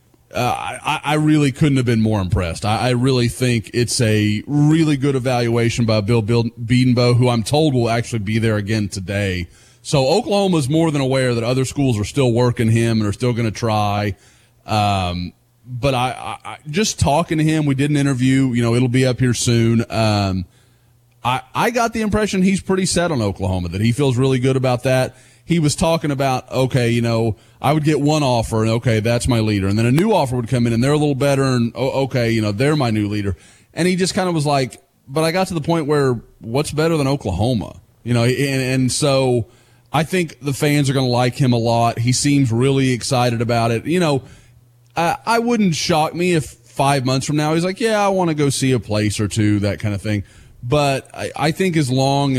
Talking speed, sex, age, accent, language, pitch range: 225 wpm, male, 30-49, American, English, 115-145 Hz